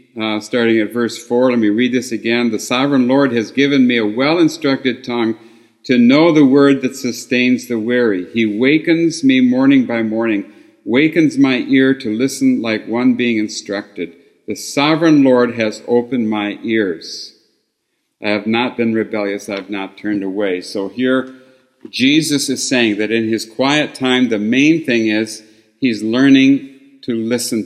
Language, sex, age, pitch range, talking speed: English, male, 50-69, 110-140 Hz, 165 wpm